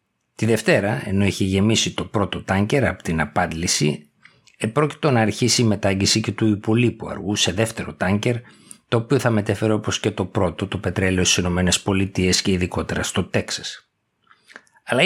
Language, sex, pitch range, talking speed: Greek, male, 90-110 Hz, 160 wpm